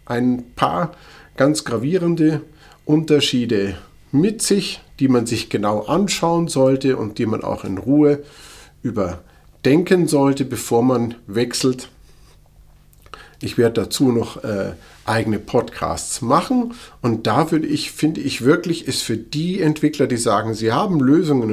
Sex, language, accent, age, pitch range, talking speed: male, German, German, 50-69, 110-150 Hz, 135 wpm